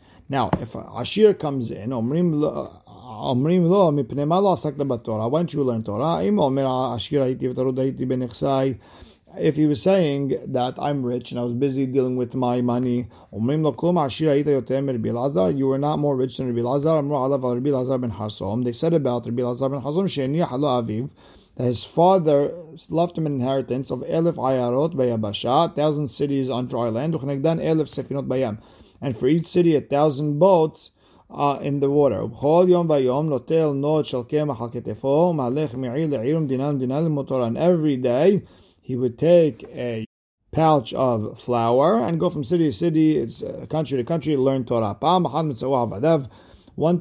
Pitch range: 125-155 Hz